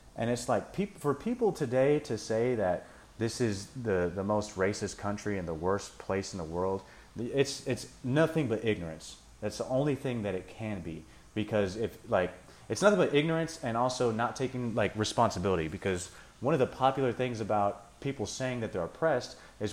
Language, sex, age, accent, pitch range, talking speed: English, male, 30-49, American, 95-125 Hz, 190 wpm